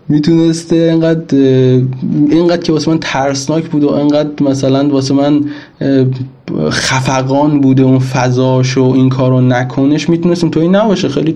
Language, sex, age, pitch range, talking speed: Persian, male, 20-39, 130-160 Hz, 135 wpm